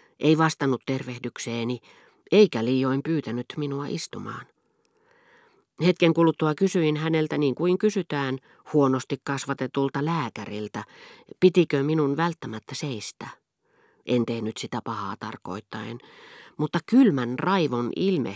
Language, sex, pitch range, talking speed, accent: Finnish, female, 120-160 Hz, 100 wpm, native